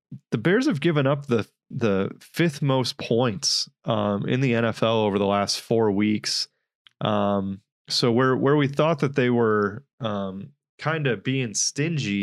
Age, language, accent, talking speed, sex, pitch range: 20-39, English, American, 160 wpm, male, 105-130 Hz